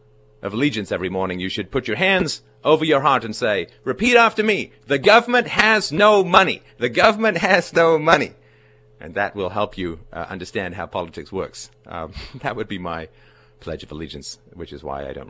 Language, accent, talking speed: English, American, 195 wpm